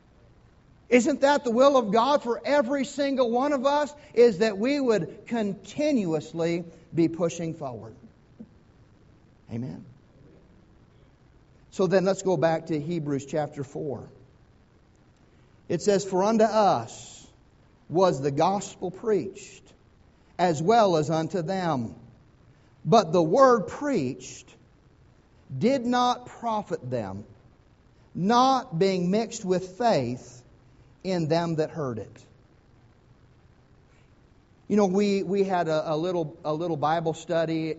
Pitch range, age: 135-190 Hz, 50-69